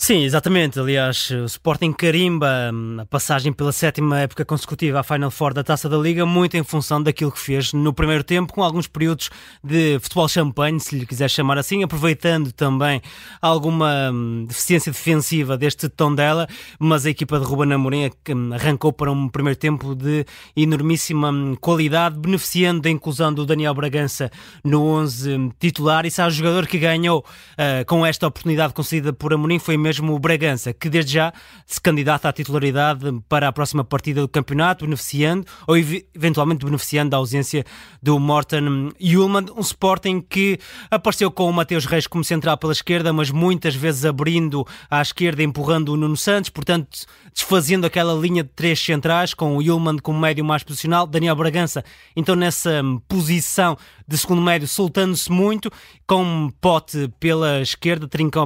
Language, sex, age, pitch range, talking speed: Portuguese, male, 20-39, 145-170 Hz, 165 wpm